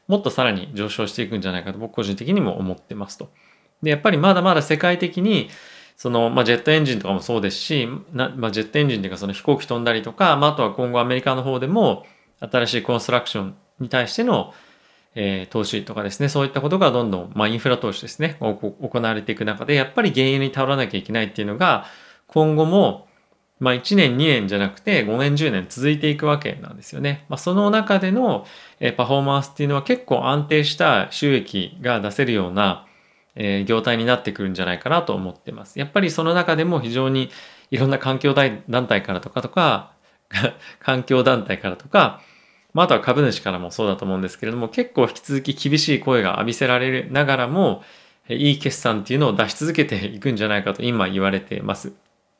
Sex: male